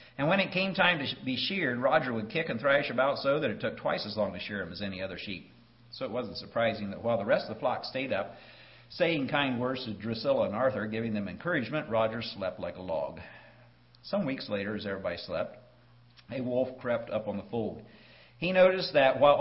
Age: 50-69